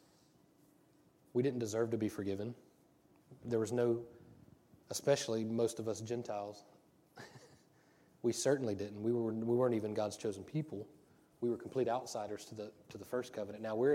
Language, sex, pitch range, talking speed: English, male, 110-125 Hz, 160 wpm